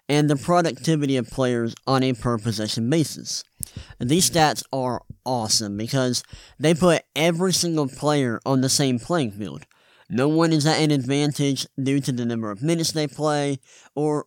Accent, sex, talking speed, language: American, male, 170 wpm, English